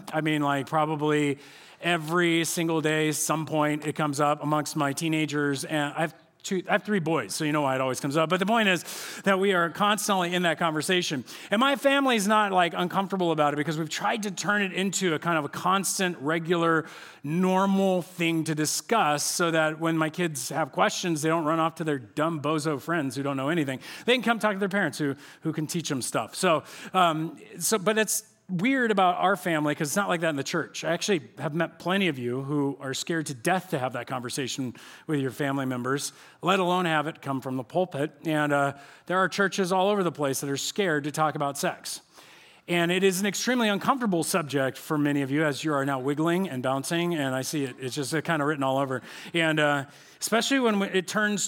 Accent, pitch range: American, 145-185 Hz